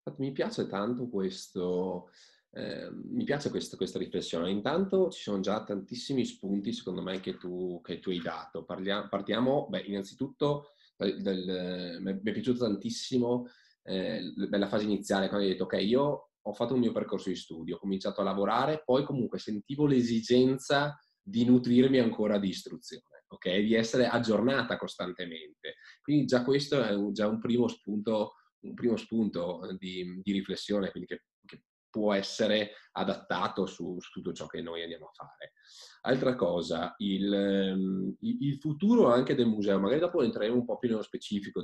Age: 20-39